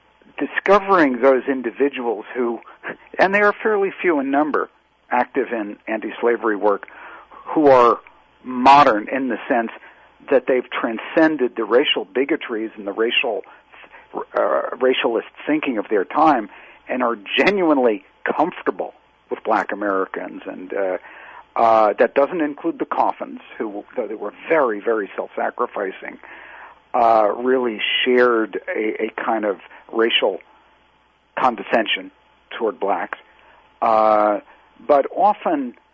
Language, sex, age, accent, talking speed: English, male, 50-69, American, 120 wpm